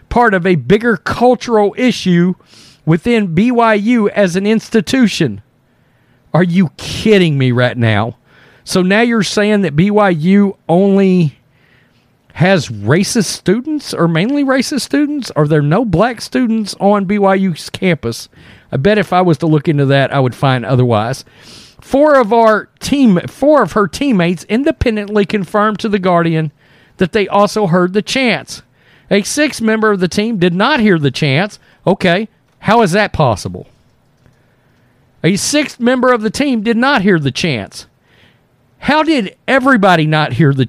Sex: male